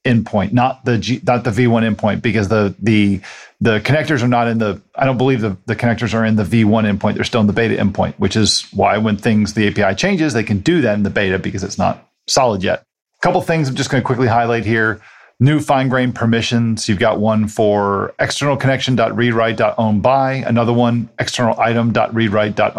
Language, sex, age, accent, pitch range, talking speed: English, male, 40-59, American, 110-130 Hz, 210 wpm